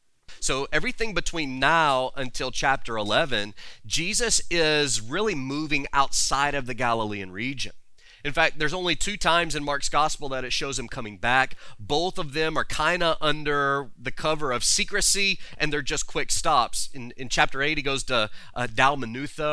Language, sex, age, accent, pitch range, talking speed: English, male, 30-49, American, 120-155 Hz, 170 wpm